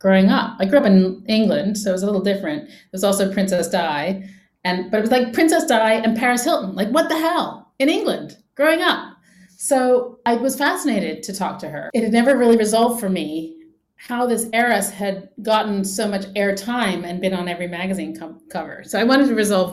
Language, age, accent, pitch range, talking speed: English, 30-49, American, 175-225 Hz, 215 wpm